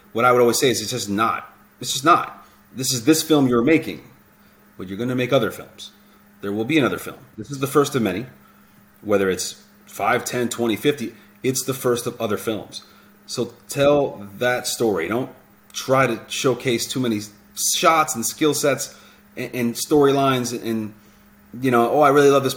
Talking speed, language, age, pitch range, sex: 190 wpm, English, 30-49, 100-130 Hz, male